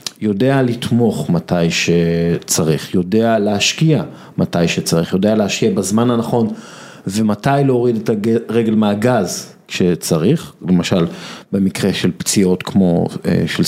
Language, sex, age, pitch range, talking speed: Hebrew, male, 50-69, 100-140 Hz, 105 wpm